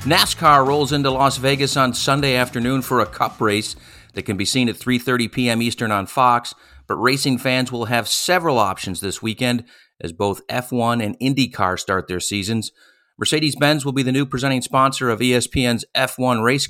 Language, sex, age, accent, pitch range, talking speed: English, male, 40-59, American, 110-135 Hz, 180 wpm